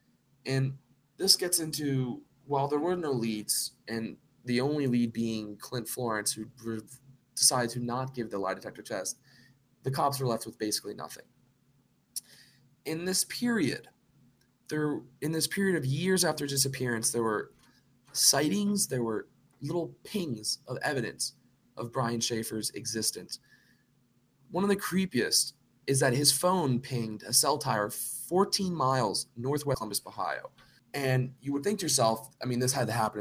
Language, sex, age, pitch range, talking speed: English, male, 20-39, 115-140 Hz, 150 wpm